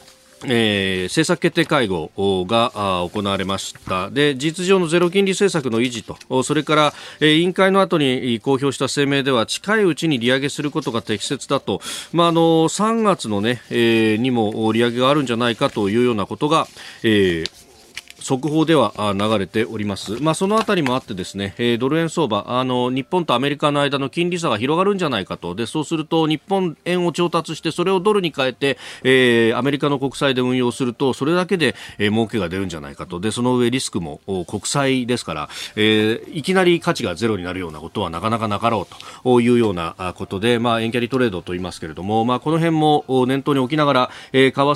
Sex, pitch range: male, 110-155 Hz